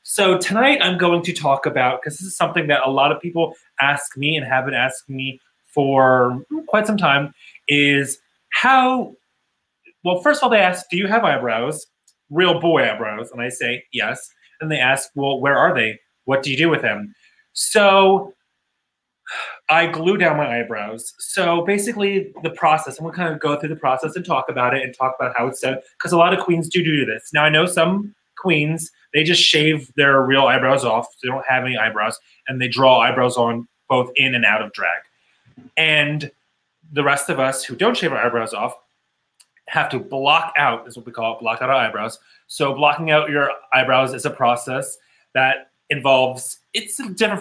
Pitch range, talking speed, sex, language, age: 130-170 Hz, 205 wpm, male, English, 30-49